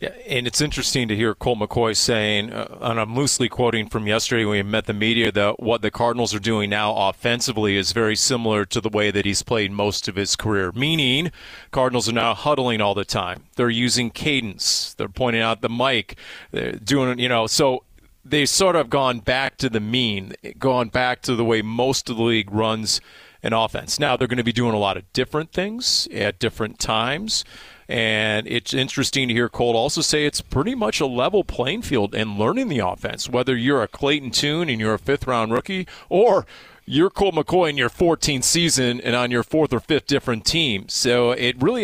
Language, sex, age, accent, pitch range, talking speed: English, male, 40-59, American, 110-140 Hz, 210 wpm